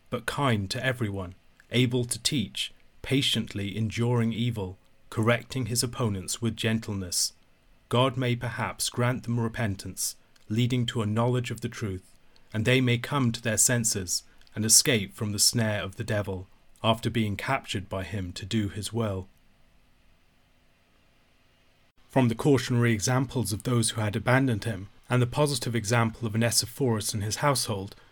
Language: English